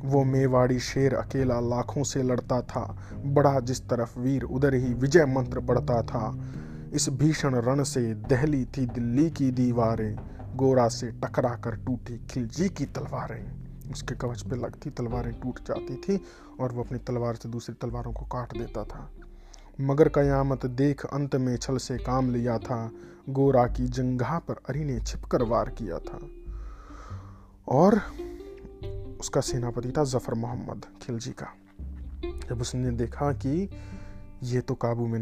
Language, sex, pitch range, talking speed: Hindi, male, 115-140 Hz, 145 wpm